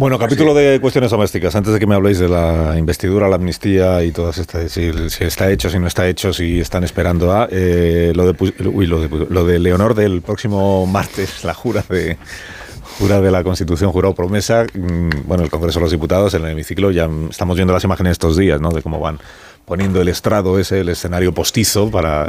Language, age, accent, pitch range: Spanish, 30-49, Spanish, 85-100 Hz